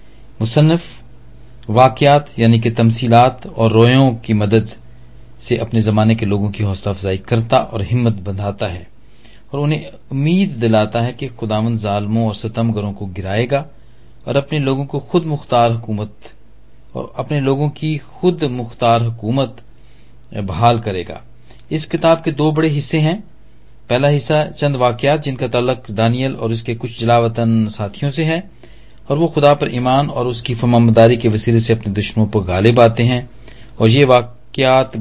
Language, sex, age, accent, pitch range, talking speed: Hindi, male, 40-59, native, 110-135 Hz, 155 wpm